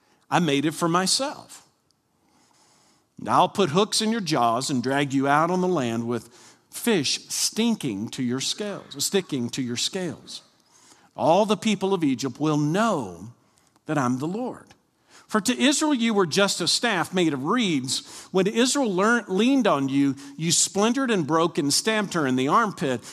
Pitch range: 140-185 Hz